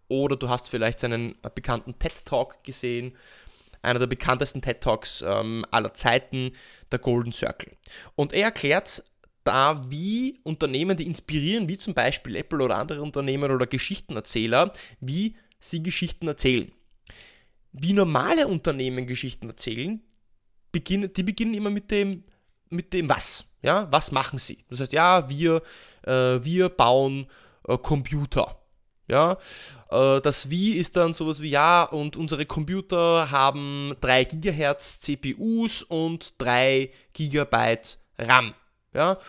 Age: 20-39